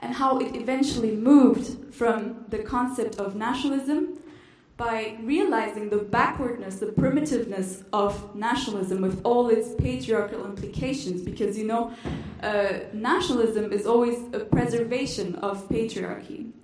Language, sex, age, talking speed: German, female, 20-39, 125 wpm